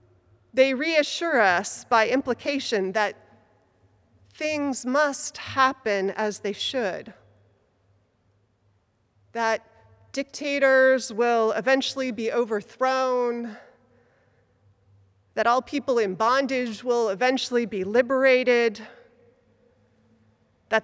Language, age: English, 30-49